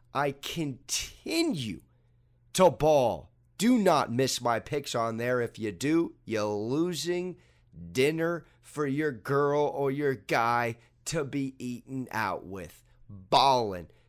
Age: 40-59